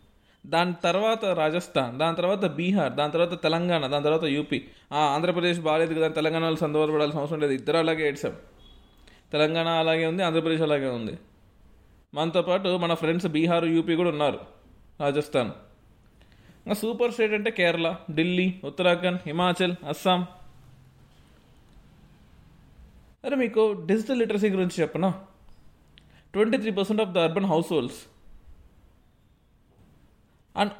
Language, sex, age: Telugu, male, 20-39